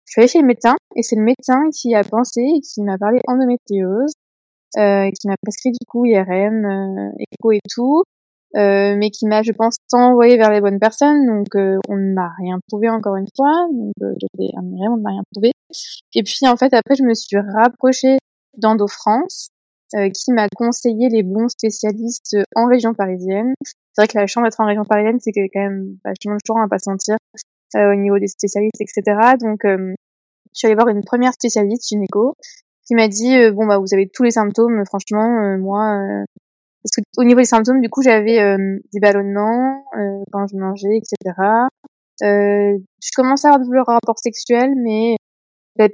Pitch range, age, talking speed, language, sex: 200-240 Hz, 20-39, 205 wpm, French, female